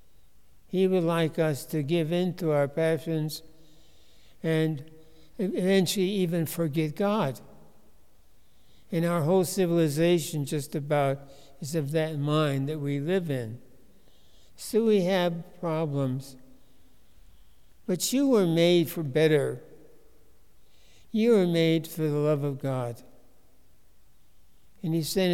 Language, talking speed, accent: English, 120 wpm, American